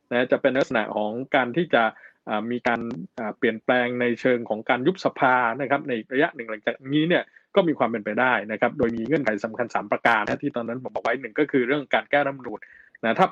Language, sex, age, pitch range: Thai, male, 20-39, 115-150 Hz